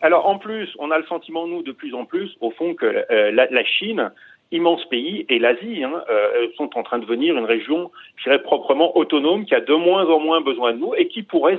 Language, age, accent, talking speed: French, 40-59, French, 245 wpm